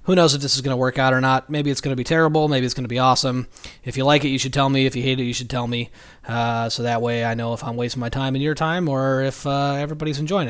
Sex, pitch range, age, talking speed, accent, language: male, 125-145 Hz, 30-49, 330 wpm, American, English